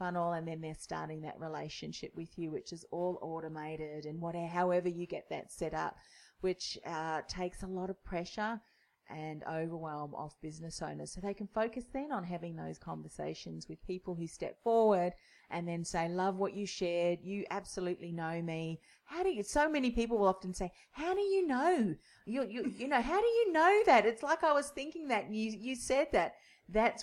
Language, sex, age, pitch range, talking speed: English, female, 30-49, 165-225 Hz, 200 wpm